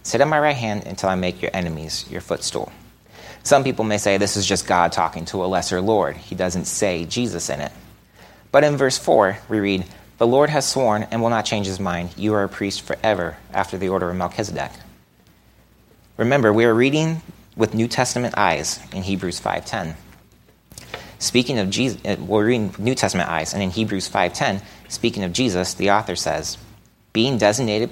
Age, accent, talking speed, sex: 30-49, American, 190 wpm, male